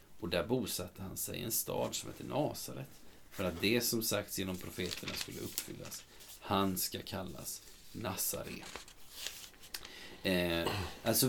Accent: native